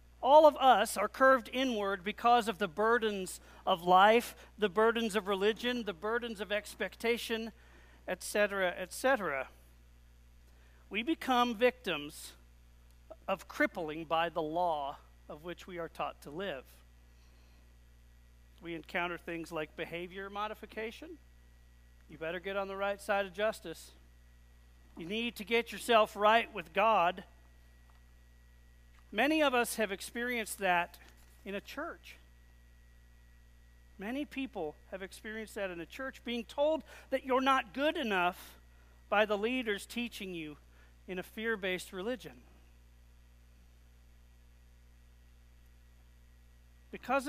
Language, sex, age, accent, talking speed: English, male, 40-59, American, 120 wpm